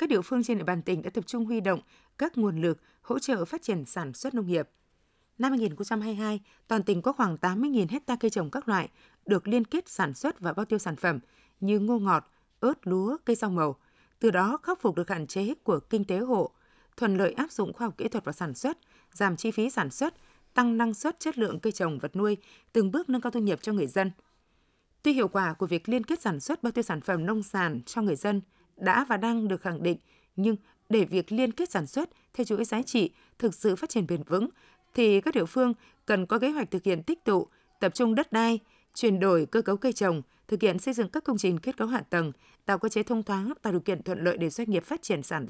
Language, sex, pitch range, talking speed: Vietnamese, female, 185-245 Hz, 250 wpm